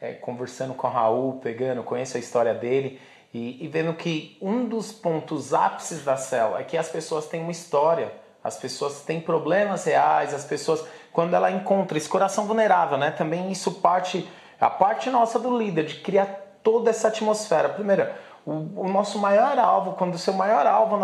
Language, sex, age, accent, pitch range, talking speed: Portuguese, male, 30-49, Brazilian, 165-215 Hz, 180 wpm